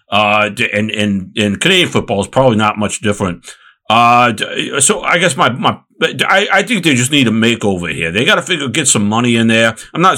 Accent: American